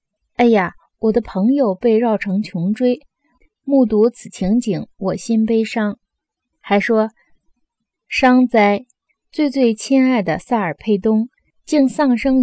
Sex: female